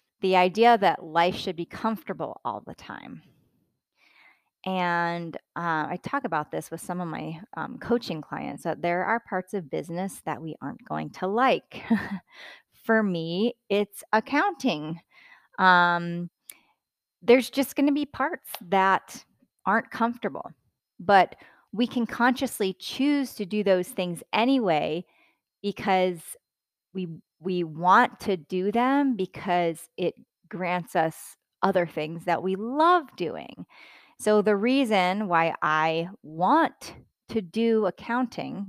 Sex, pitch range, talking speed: female, 170-225 Hz, 130 wpm